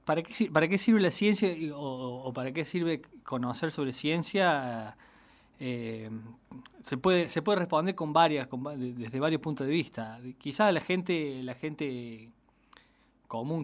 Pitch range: 125-160 Hz